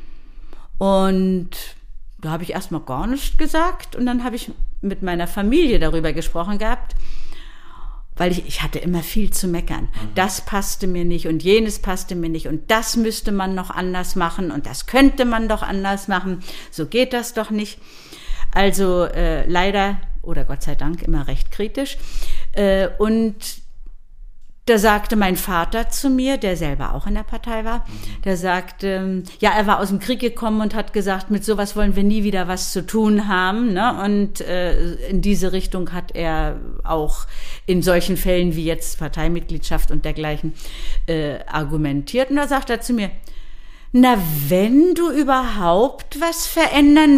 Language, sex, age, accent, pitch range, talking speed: German, female, 50-69, German, 170-230 Hz, 170 wpm